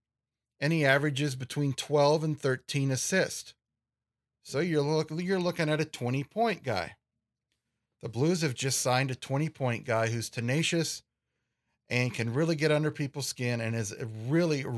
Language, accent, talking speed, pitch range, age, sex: English, American, 145 wpm, 125-160 Hz, 40-59, male